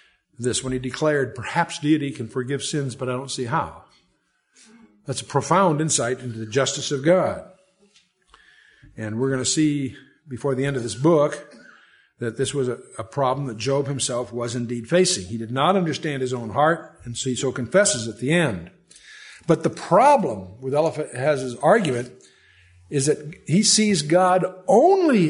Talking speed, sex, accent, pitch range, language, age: 175 wpm, male, American, 125-180 Hz, English, 50-69